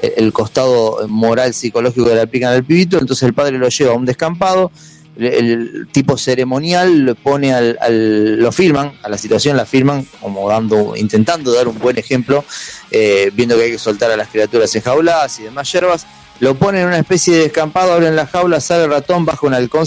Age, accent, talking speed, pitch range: 30-49, Argentinian, 210 wpm, 115-165 Hz